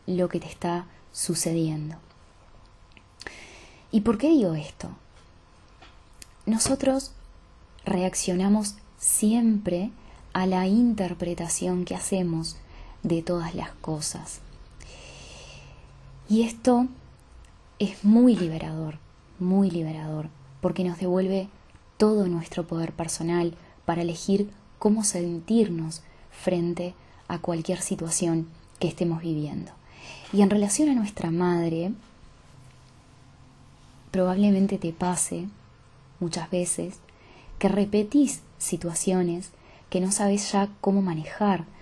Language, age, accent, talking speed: Spanish, 20-39, Argentinian, 95 wpm